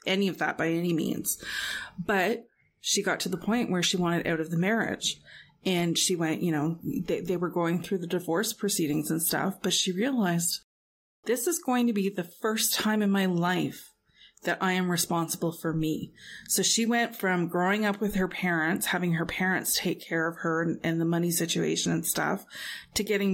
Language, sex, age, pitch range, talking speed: English, female, 20-39, 170-200 Hz, 200 wpm